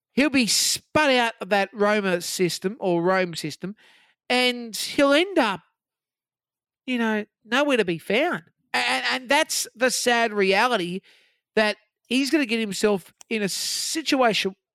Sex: male